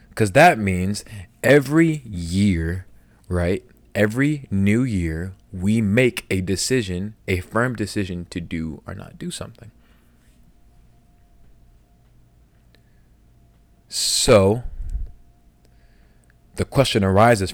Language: English